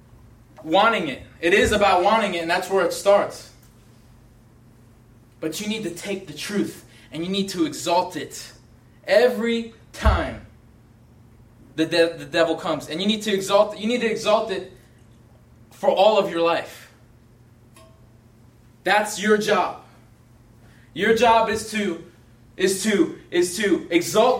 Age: 20-39